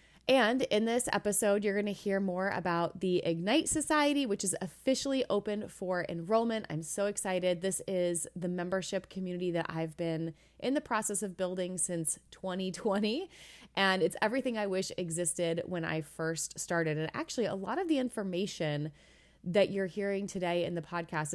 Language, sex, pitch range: English, female, 165-200 Hz